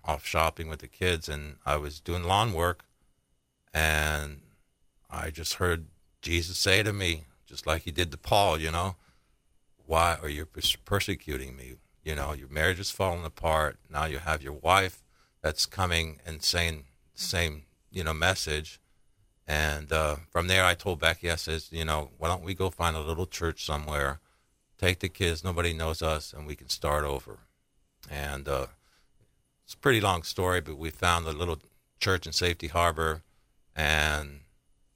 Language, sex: English, male